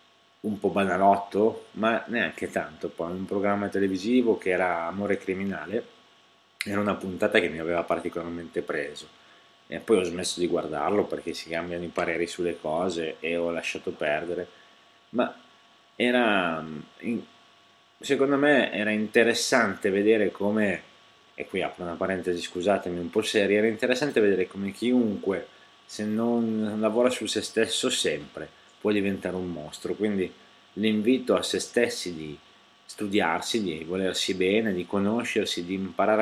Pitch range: 90-115 Hz